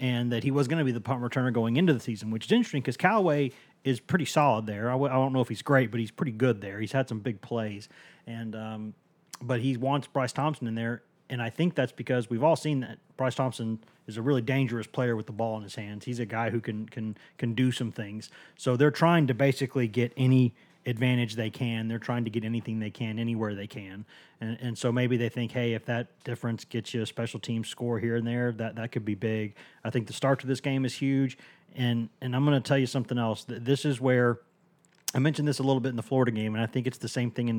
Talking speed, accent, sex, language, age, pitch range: 265 wpm, American, male, English, 30-49, 115-135 Hz